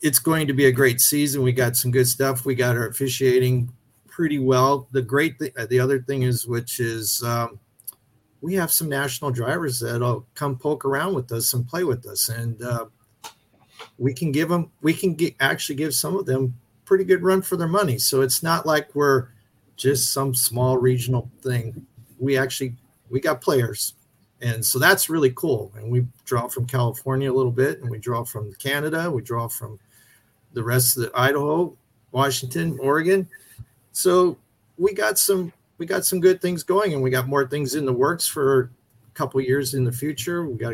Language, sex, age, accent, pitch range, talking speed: English, male, 50-69, American, 120-145 Hz, 195 wpm